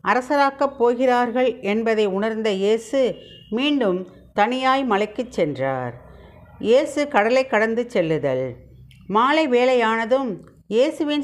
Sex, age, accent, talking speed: female, 50-69, native, 85 wpm